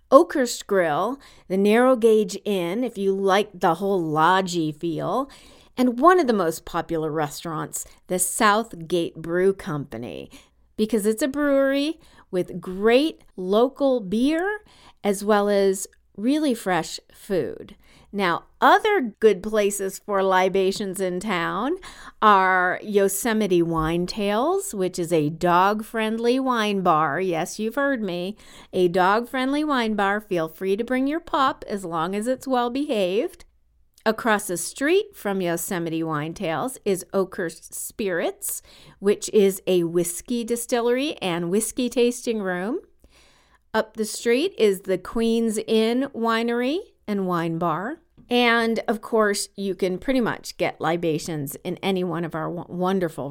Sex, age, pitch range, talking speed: female, 40-59, 180-255 Hz, 135 wpm